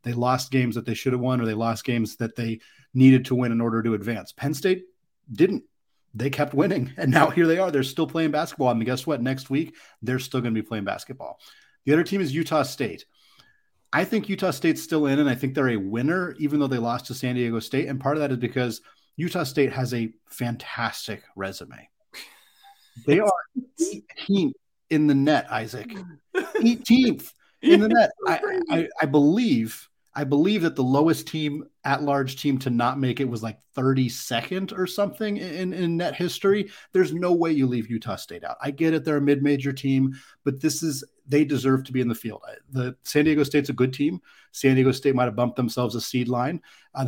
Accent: American